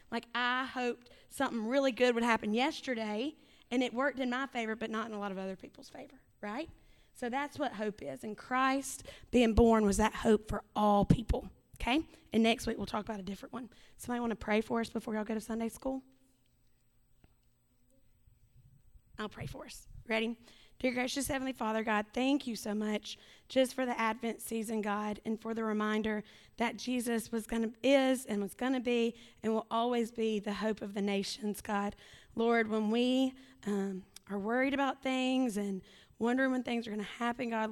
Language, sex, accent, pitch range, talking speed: English, female, American, 210-245 Hz, 195 wpm